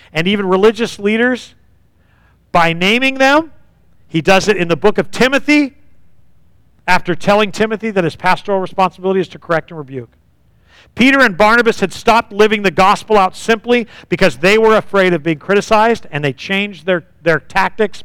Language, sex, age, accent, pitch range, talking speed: English, male, 50-69, American, 160-220 Hz, 165 wpm